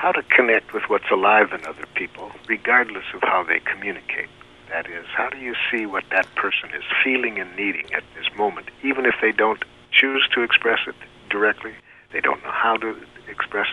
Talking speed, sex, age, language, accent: 195 wpm, male, 60-79, English, American